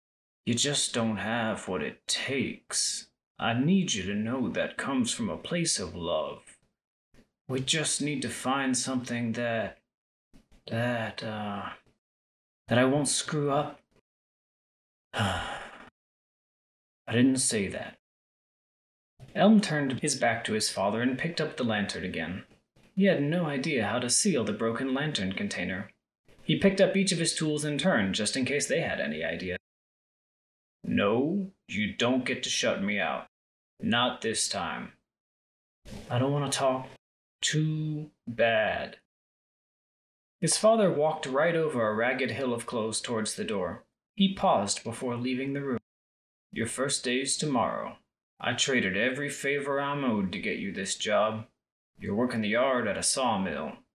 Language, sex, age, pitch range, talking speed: English, male, 30-49, 115-165 Hz, 150 wpm